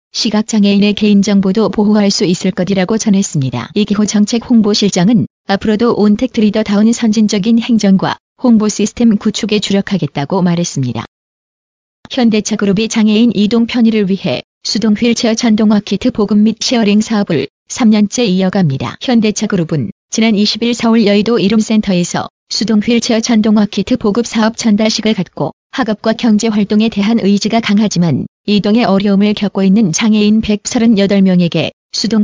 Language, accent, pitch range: Korean, native, 200-225 Hz